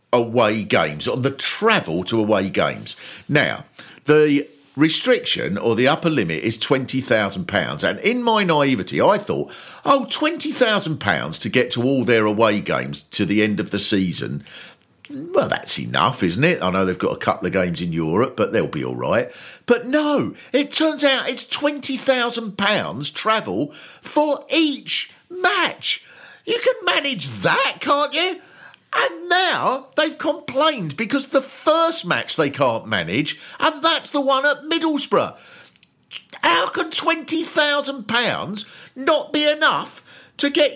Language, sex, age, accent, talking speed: English, male, 50-69, British, 145 wpm